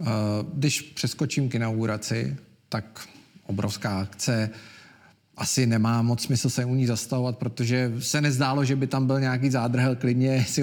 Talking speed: 145 wpm